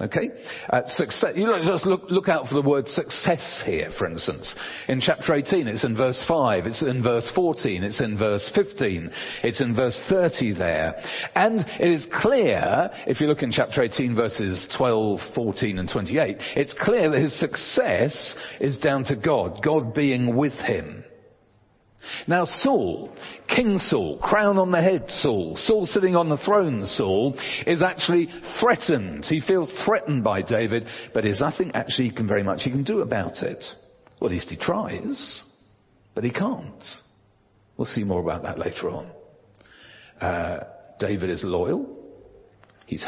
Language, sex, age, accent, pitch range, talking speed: English, male, 50-69, British, 110-155 Hz, 165 wpm